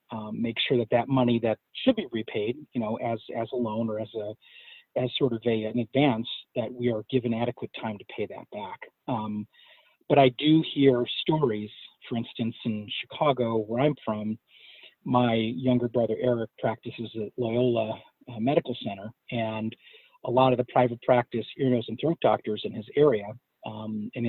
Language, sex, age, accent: English, male, 40-59, American